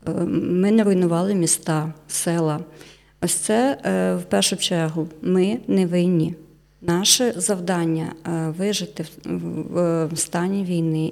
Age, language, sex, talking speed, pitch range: 30-49, Ukrainian, female, 110 wpm, 160-185 Hz